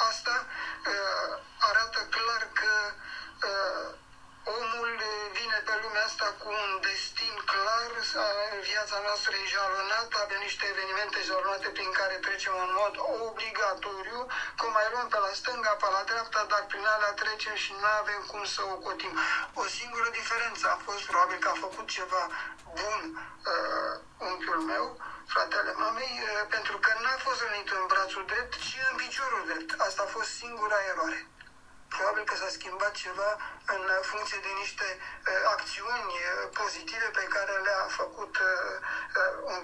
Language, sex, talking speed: Romanian, male, 150 wpm